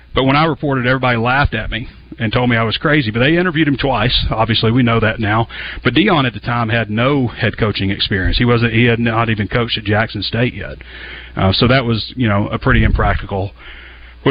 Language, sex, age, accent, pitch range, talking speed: English, male, 40-59, American, 100-125 Hz, 230 wpm